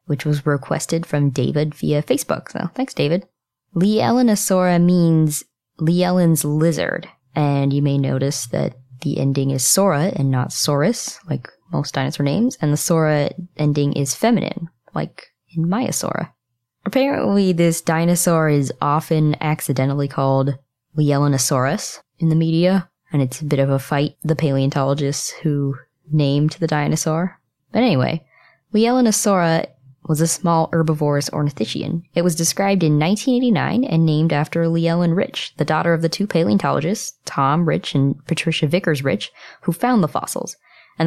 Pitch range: 140-175 Hz